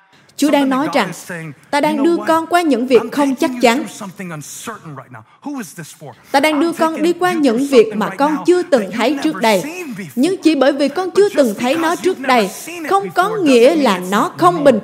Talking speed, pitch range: 190 wpm, 245-350 Hz